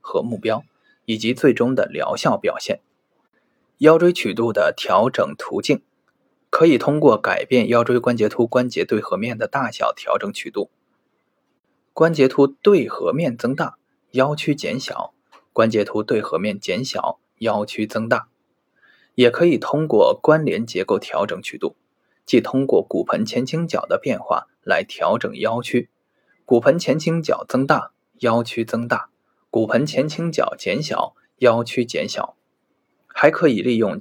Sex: male